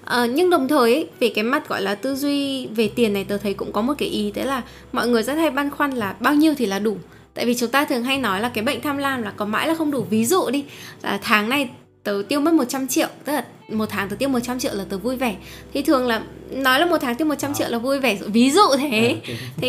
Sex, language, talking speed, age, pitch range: female, Vietnamese, 285 wpm, 10-29, 220-295 Hz